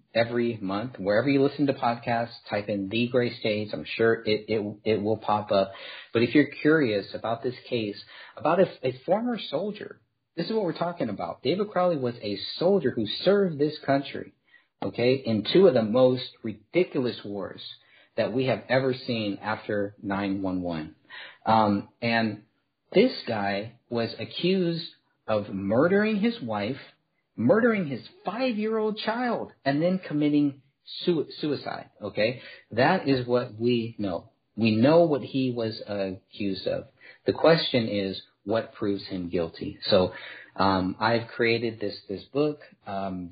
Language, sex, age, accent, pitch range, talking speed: English, male, 50-69, American, 105-140 Hz, 150 wpm